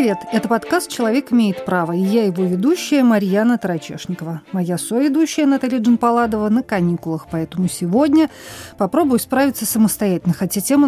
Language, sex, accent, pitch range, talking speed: Russian, female, native, 185-255 Hz, 140 wpm